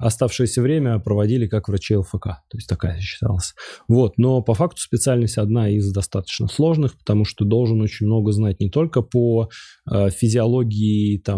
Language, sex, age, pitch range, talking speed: Russian, male, 20-39, 100-120 Hz, 155 wpm